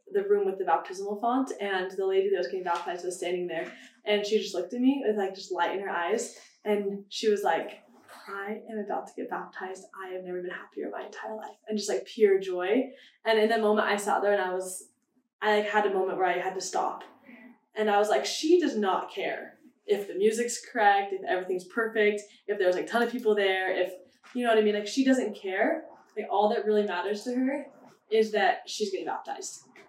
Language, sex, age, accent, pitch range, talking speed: English, female, 10-29, American, 195-265 Hz, 235 wpm